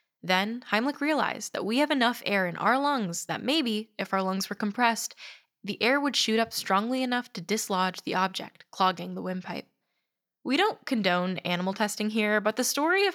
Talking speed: 190 wpm